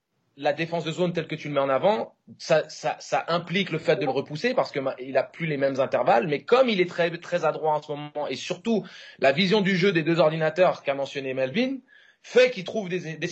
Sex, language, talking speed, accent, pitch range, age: male, French, 245 wpm, French, 155-215 Hz, 30-49